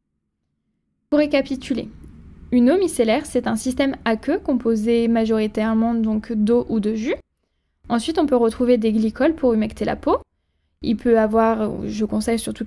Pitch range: 215-255 Hz